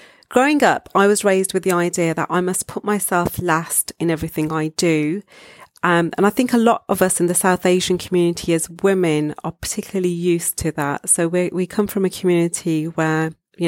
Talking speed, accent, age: 205 wpm, British, 40-59